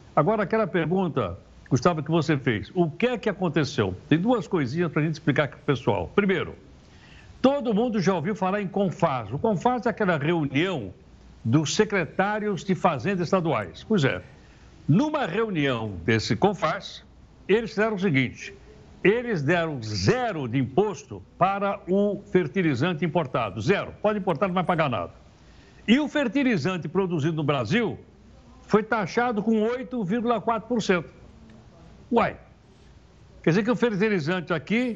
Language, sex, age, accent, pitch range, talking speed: Portuguese, male, 60-79, Brazilian, 150-210 Hz, 145 wpm